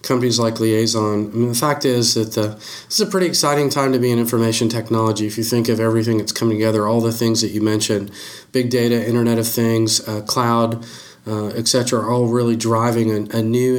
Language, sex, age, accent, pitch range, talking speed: English, male, 40-59, American, 110-120 Hz, 225 wpm